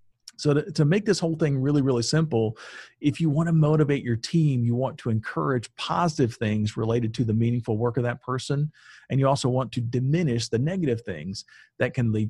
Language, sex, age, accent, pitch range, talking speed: English, male, 40-59, American, 110-145 Hz, 210 wpm